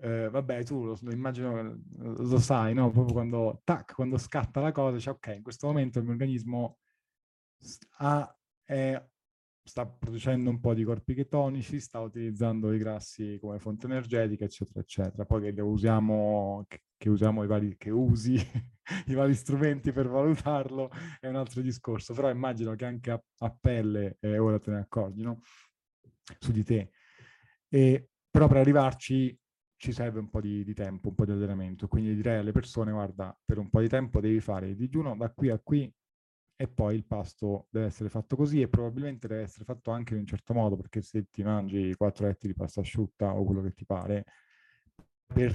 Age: 30-49